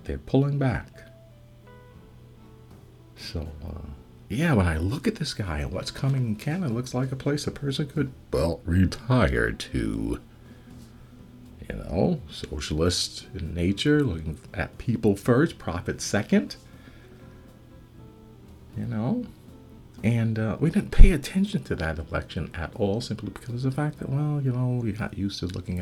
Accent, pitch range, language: American, 80-125 Hz, English